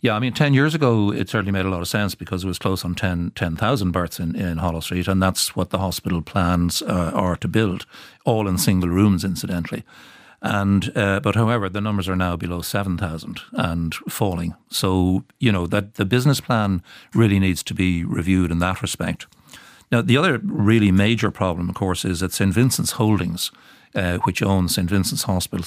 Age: 60-79